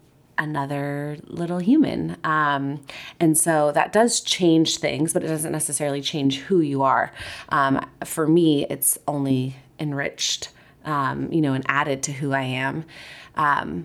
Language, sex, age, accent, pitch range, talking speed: English, female, 20-39, American, 150-180 Hz, 145 wpm